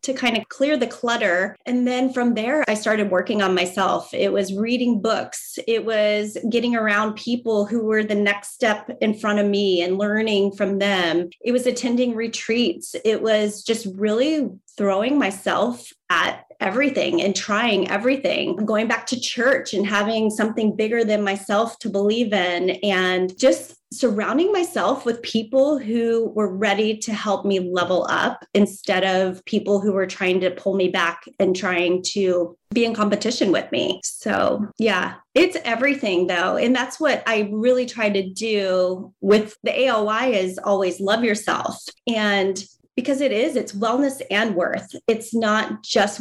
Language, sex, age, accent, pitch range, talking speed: English, female, 30-49, American, 195-240 Hz, 165 wpm